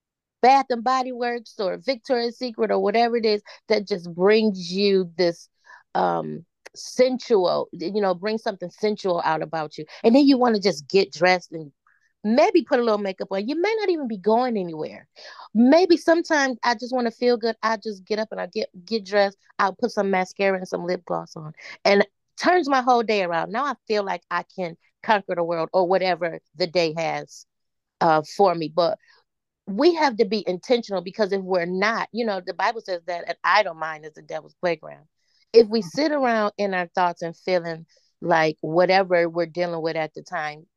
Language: English